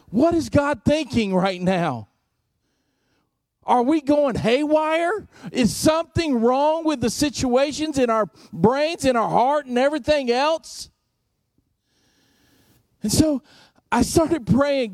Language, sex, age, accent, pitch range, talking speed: English, male, 40-59, American, 190-255 Hz, 120 wpm